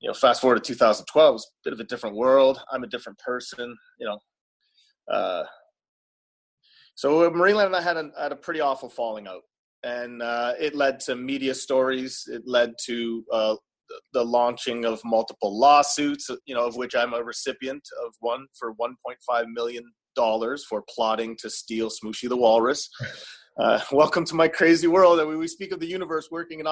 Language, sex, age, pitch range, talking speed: English, male, 30-49, 120-170 Hz, 185 wpm